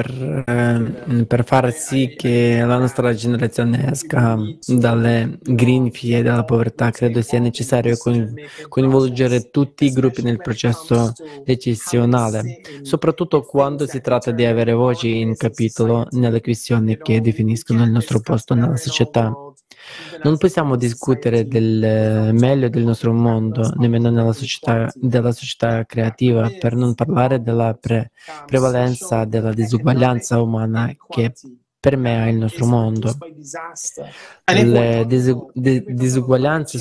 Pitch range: 115-130 Hz